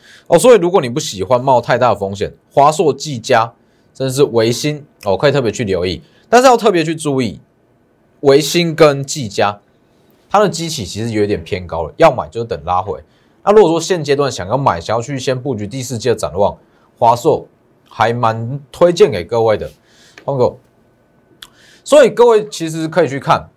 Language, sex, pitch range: Chinese, male, 115-180 Hz